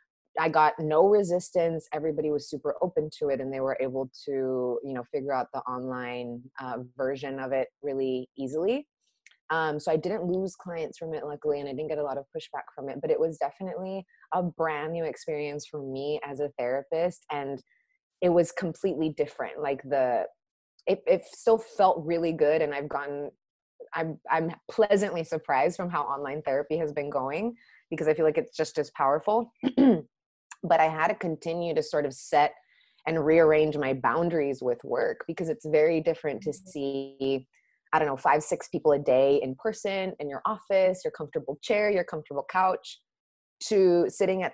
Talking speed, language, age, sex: 185 wpm, English, 20-39, female